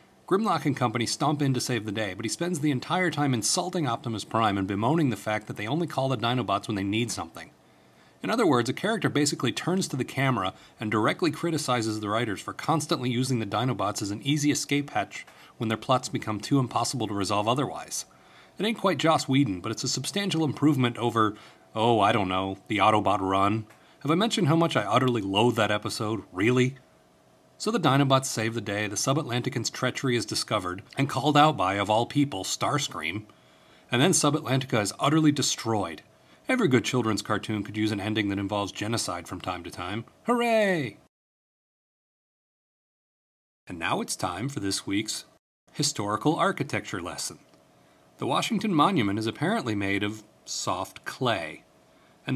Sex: male